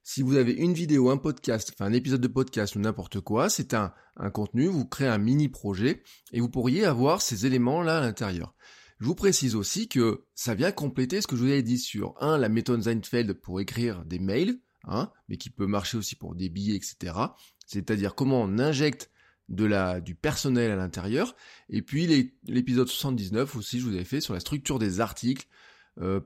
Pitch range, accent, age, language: 105-150 Hz, French, 20-39, French